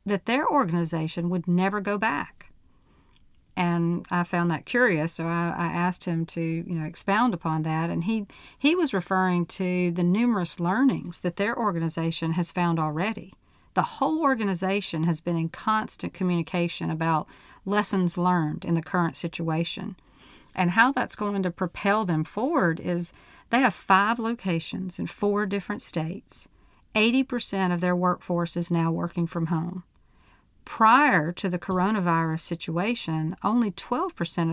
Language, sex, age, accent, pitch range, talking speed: English, female, 50-69, American, 170-220 Hz, 150 wpm